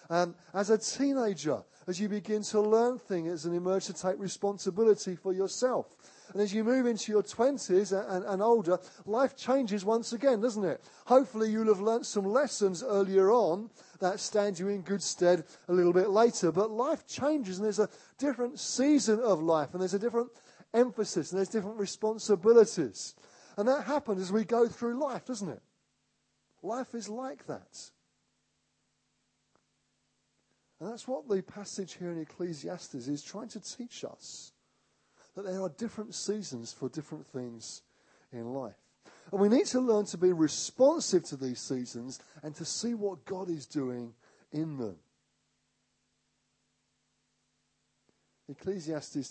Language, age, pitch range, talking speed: English, 40-59, 160-220 Hz, 155 wpm